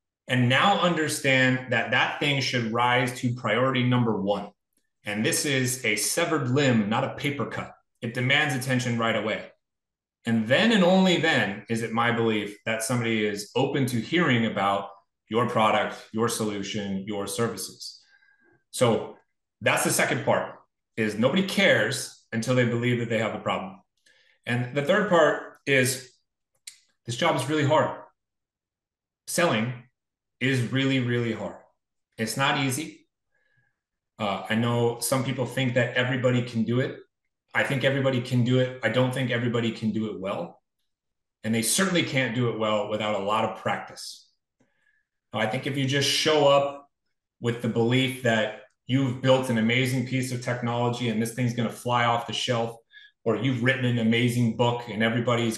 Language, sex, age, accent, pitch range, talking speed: English, male, 30-49, American, 115-135 Hz, 165 wpm